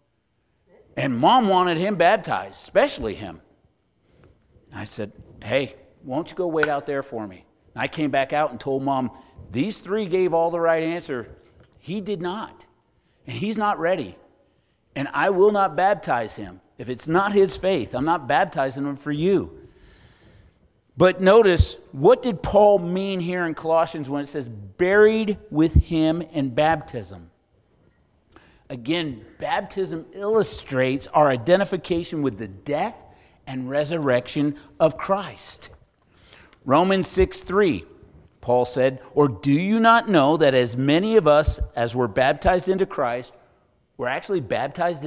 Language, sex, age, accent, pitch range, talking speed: English, male, 50-69, American, 130-190 Hz, 145 wpm